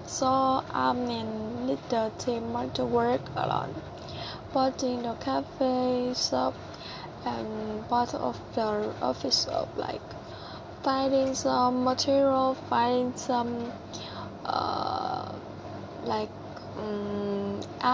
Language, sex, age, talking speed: Vietnamese, female, 10-29, 85 wpm